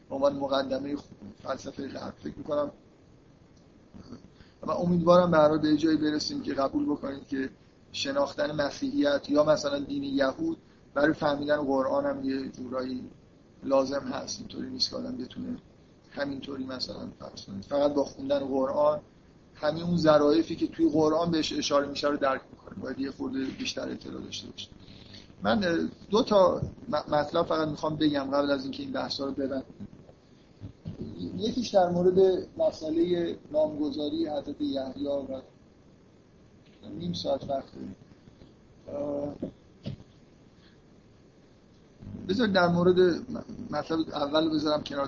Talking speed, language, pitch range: 125 wpm, Persian, 140-180 Hz